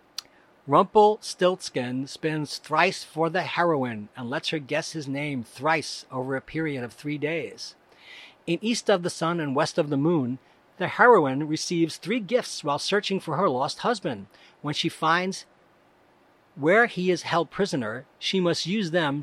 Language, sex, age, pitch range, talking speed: English, male, 40-59, 145-185 Hz, 160 wpm